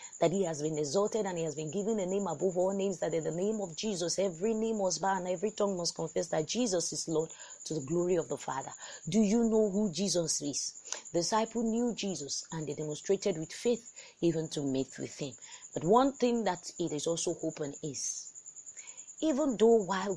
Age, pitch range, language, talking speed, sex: 30-49, 170-225 Hz, English, 215 wpm, female